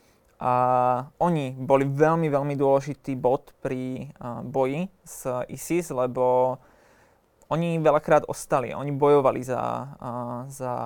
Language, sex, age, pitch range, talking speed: Slovak, male, 20-39, 130-155 Hz, 115 wpm